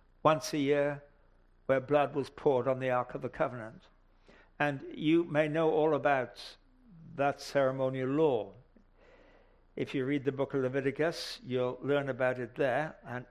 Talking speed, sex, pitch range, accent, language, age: 160 wpm, male, 130-155 Hz, British, English, 60-79